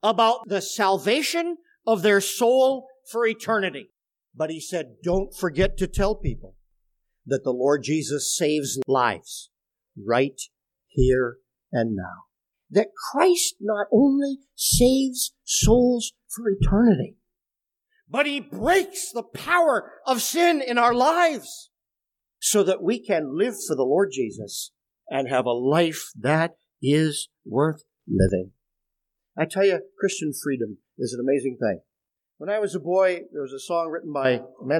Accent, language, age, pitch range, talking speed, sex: American, English, 50-69, 135-225 Hz, 145 wpm, male